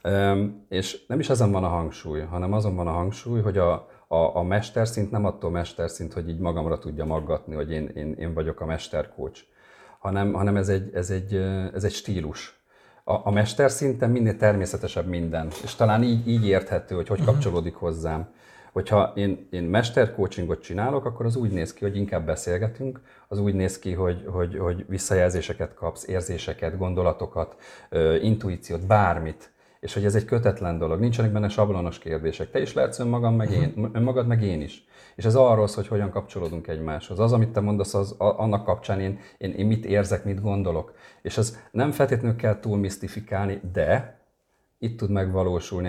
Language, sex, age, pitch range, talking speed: Hungarian, male, 40-59, 90-105 Hz, 170 wpm